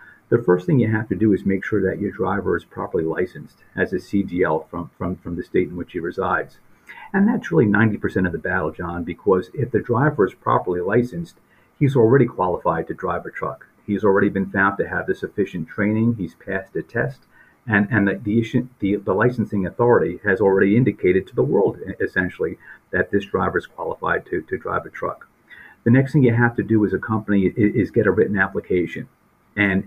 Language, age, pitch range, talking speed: English, 50-69, 95-115 Hz, 205 wpm